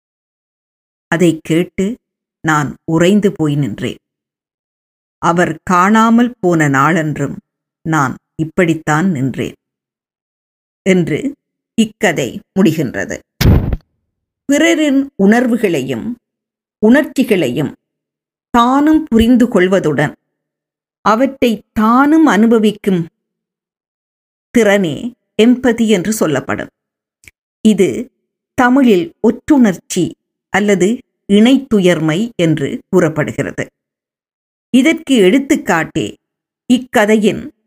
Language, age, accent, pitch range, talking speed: Tamil, 50-69, native, 160-230 Hz, 60 wpm